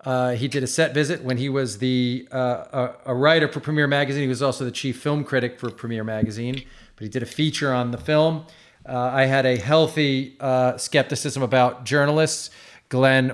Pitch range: 120-145 Hz